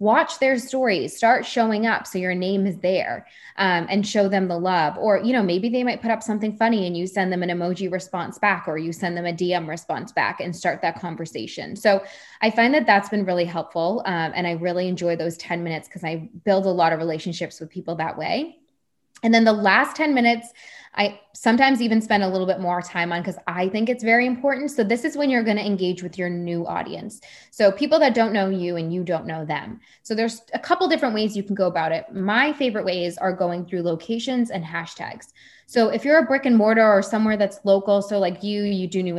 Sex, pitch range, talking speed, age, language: female, 175-225 Hz, 240 wpm, 20-39, English